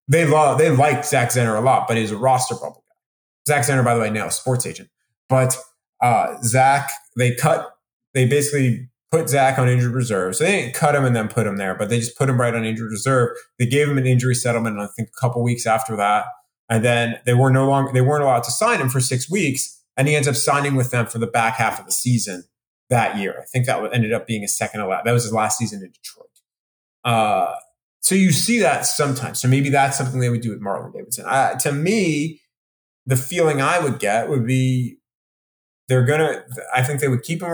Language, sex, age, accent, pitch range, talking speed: English, male, 30-49, American, 115-140 Hz, 235 wpm